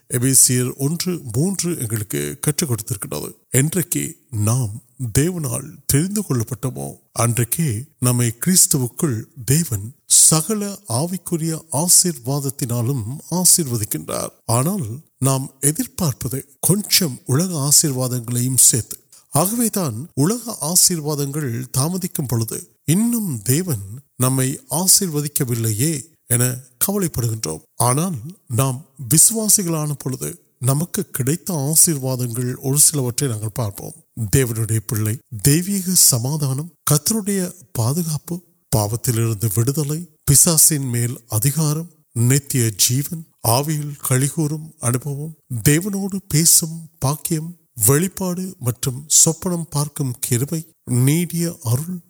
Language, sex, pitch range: Urdu, male, 125-170 Hz